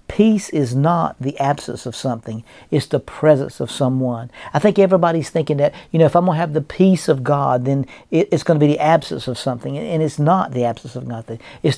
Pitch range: 135-165 Hz